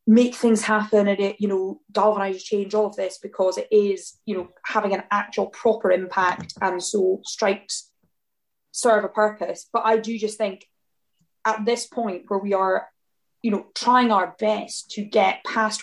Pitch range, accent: 200-225 Hz, British